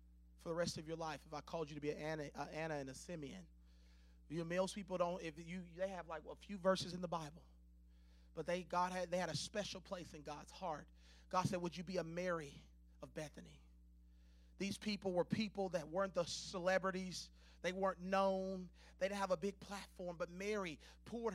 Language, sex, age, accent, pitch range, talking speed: English, male, 30-49, American, 160-230 Hz, 210 wpm